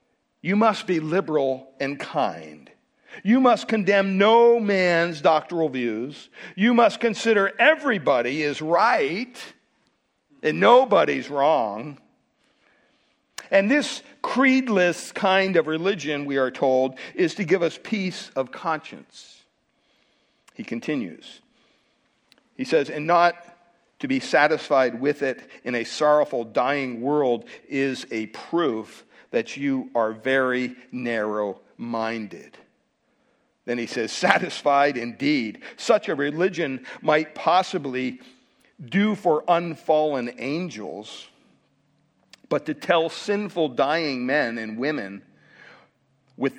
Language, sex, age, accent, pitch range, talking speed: English, male, 50-69, American, 130-200 Hz, 110 wpm